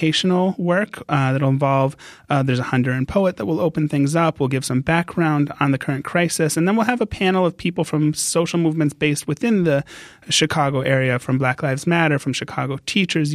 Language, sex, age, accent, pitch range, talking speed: English, male, 30-49, American, 135-165 Hz, 210 wpm